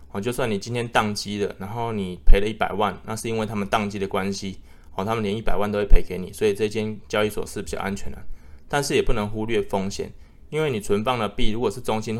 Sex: male